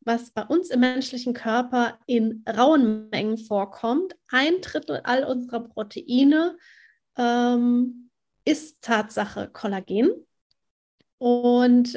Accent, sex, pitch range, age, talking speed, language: German, female, 225-255 Hz, 30-49, 100 wpm, German